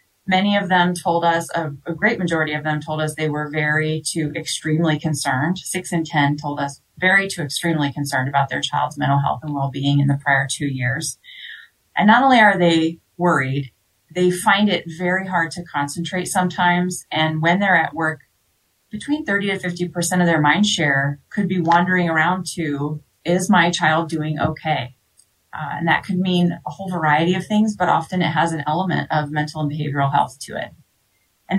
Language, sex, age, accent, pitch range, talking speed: English, female, 30-49, American, 150-185 Hz, 195 wpm